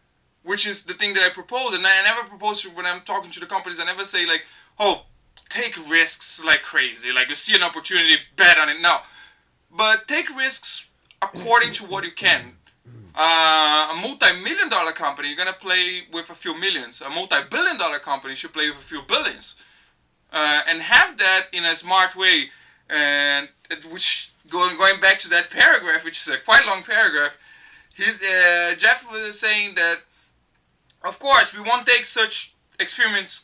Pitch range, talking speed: 170-230 Hz, 185 wpm